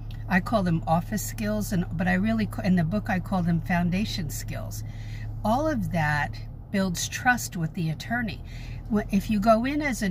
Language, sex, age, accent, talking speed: English, female, 50-69, American, 185 wpm